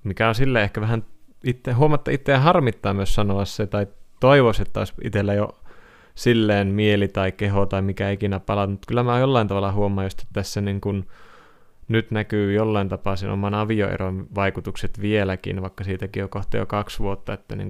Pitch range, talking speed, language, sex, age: 95-105 Hz, 185 wpm, Finnish, male, 20-39